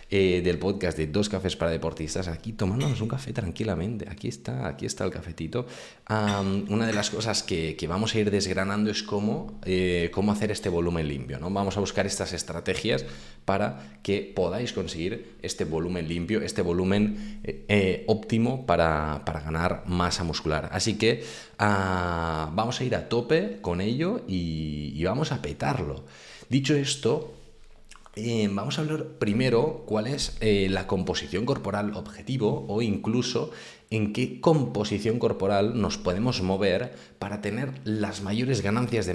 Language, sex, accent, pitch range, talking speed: Spanish, male, Spanish, 85-115 Hz, 160 wpm